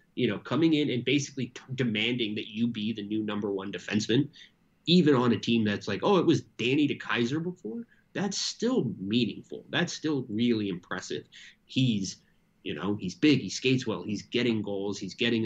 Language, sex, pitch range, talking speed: English, male, 105-155 Hz, 185 wpm